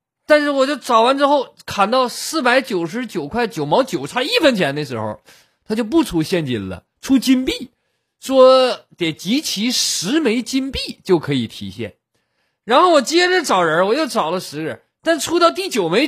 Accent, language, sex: native, Chinese, male